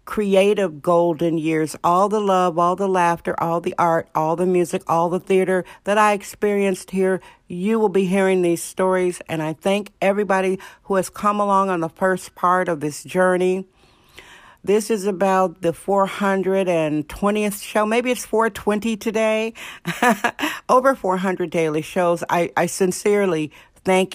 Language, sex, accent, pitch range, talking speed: English, female, American, 165-195 Hz, 150 wpm